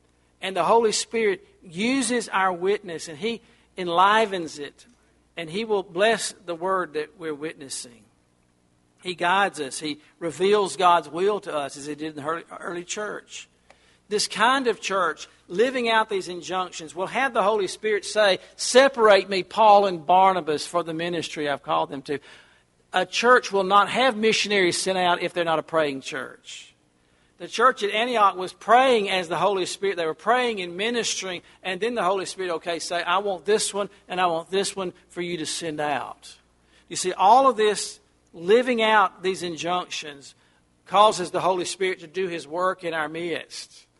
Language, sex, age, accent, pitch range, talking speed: English, male, 50-69, American, 155-200 Hz, 180 wpm